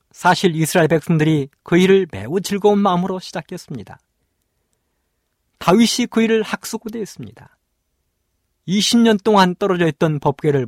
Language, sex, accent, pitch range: Korean, male, native, 125-195 Hz